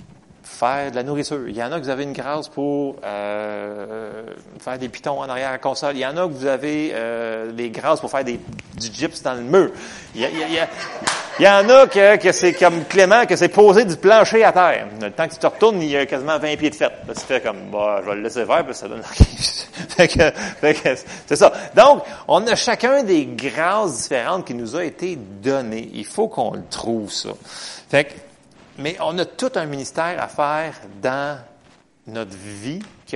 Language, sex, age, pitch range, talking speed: French, male, 30-49, 120-170 Hz, 235 wpm